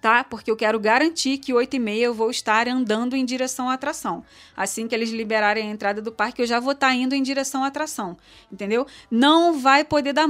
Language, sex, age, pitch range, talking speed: Portuguese, female, 20-39, 220-265 Hz, 215 wpm